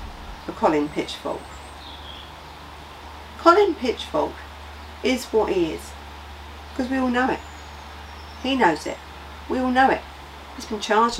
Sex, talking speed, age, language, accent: female, 130 wpm, 40-59, English, British